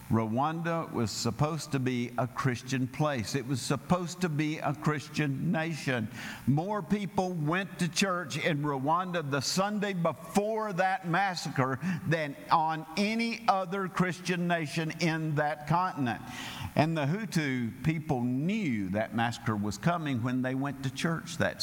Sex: male